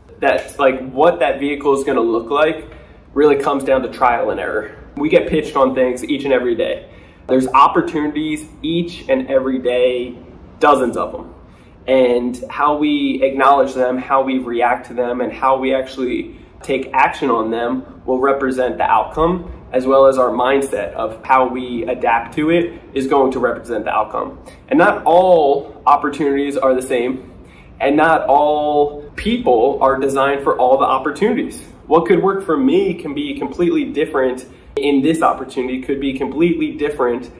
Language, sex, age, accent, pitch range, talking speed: English, male, 20-39, American, 130-160 Hz, 170 wpm